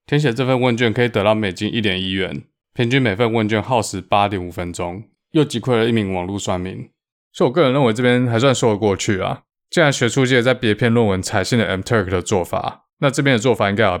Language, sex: Chinese, male